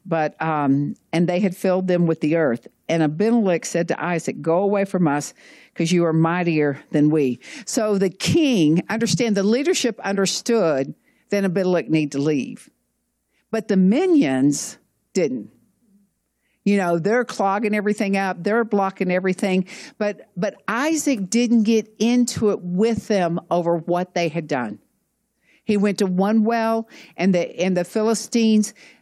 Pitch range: 175-230 Hz